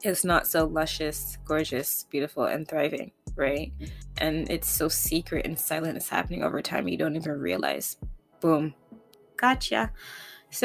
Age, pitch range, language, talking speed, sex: 20-39, 150-175 Hz, English, 145 wpm, female